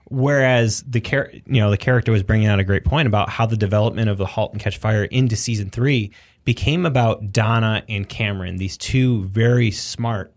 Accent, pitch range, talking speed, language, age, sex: American, 100-115 Hz, 205 wpm, English, 20-39, male